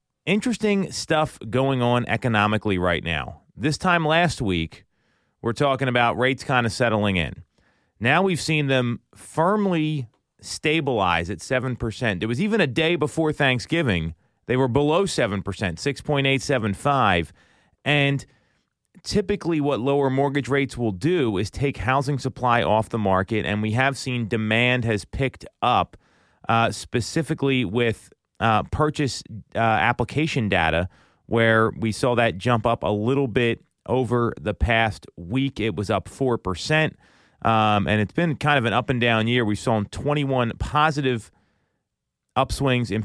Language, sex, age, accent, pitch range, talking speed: English, male, 30-49, American, 105-140 Hz, 140 wpm